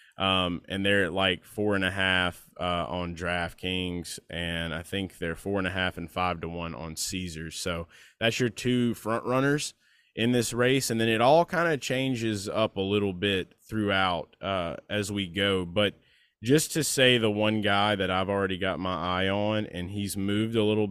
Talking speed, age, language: 200 wpm, 20-39, English